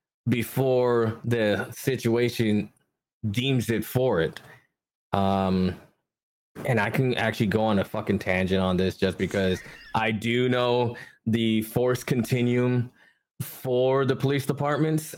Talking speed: 125 wpm